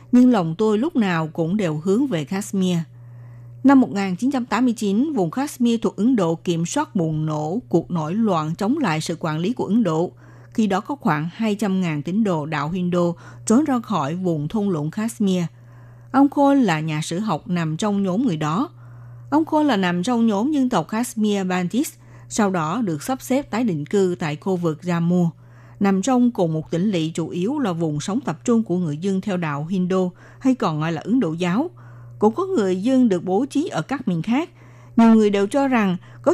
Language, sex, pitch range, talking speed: Vietnamese, female, 165-225 Hz, 205 wpm